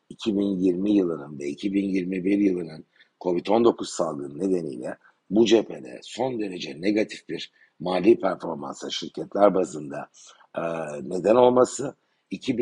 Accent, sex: native, male